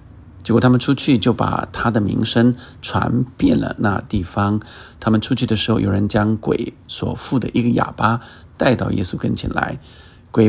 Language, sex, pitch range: Chinese, male, 100-120 Hz